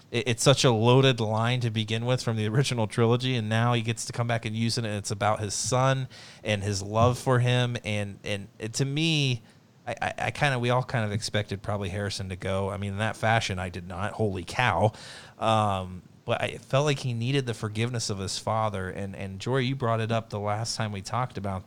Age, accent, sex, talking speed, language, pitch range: 30-49, American, male, 240 wpm, English, 105-130 Hz